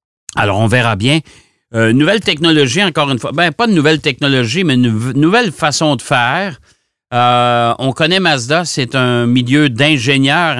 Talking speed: 165 wpm